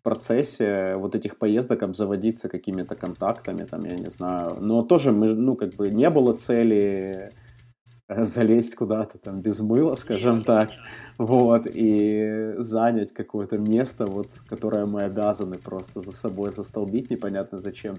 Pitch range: 100-120 Hz